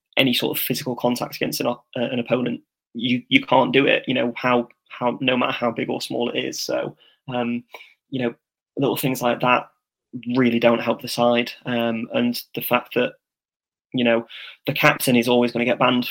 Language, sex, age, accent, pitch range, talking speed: English, male, 20-39, British, 120-130 Hz, 205 wpm